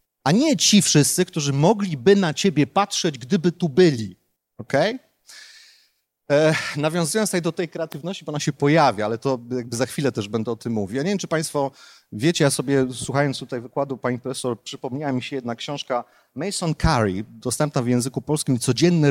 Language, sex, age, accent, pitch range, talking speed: Polish, male, 30-49, native, 130-175 Hz, 180 wpm